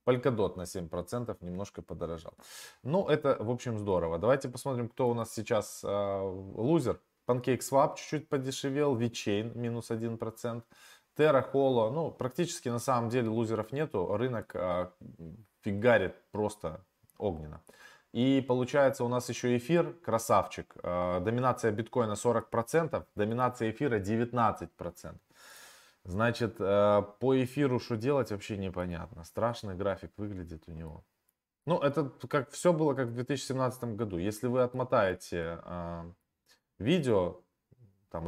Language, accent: Russian, native